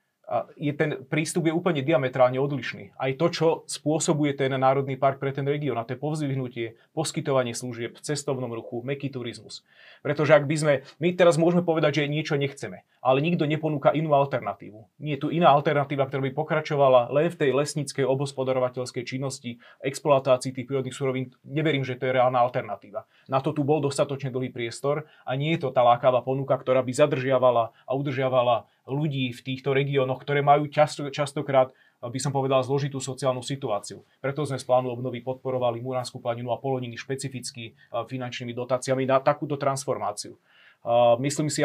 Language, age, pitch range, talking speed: Slovak, 30-49, 125-145 Hz, 170 wpm